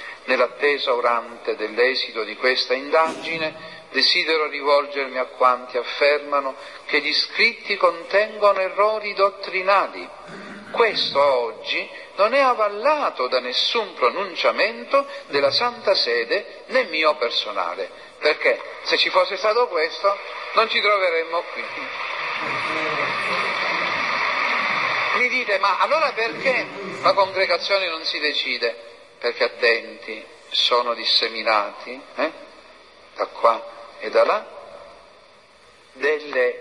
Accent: native